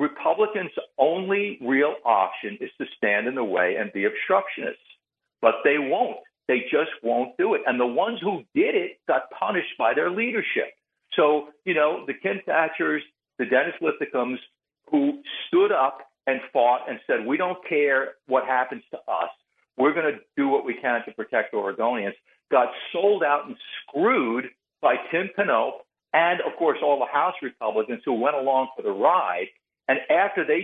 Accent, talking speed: American, 170 wpm